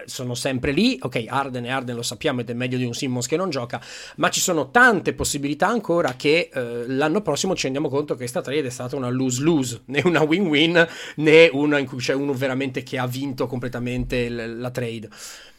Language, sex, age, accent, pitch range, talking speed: Italian, male, 30-49, native, 125-160 Hz, 210 wpm